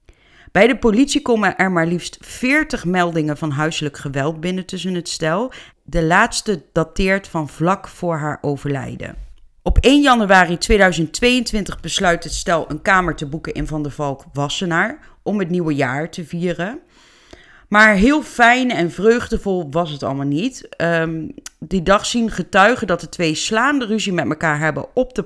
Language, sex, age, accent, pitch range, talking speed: Dutch, female, 30-49, Dutch, 155-200 Hz, 160 wpm